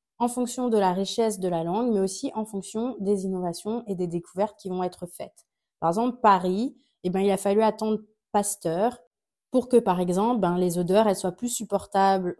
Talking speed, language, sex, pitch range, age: 200 wpm, French, female, 185-240 Hz, 30-49